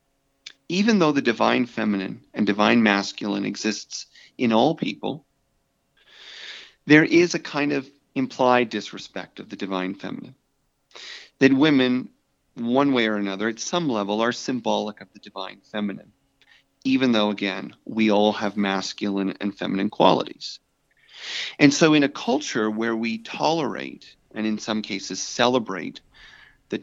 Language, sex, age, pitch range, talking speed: English, male, 40-59, 100-130 Hz, 140 wpm